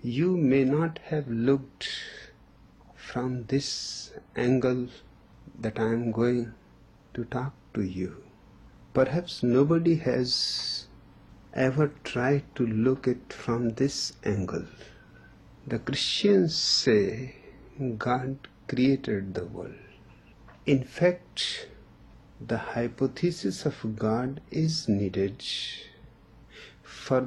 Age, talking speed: 60-79, 95 wpm